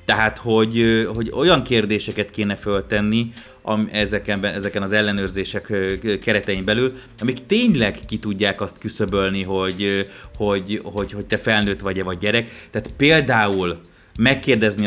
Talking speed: 120 wpm